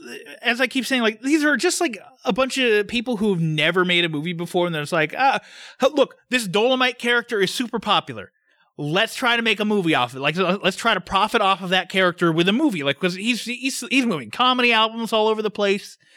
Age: 30-49